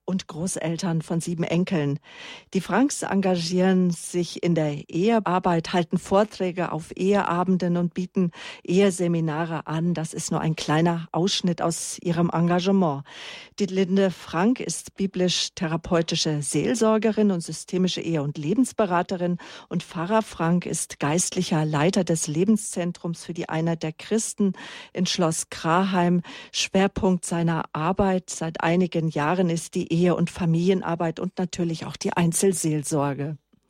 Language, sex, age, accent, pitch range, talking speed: German, female, 40-59, German, 165-190 Hz, 130 wpm